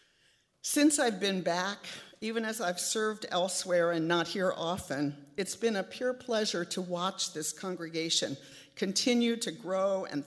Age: 50-69